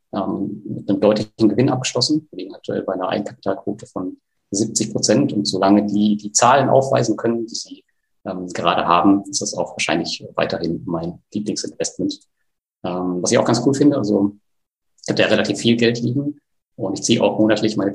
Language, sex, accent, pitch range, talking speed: German, male, German, 100-120 Hz, 185 wpm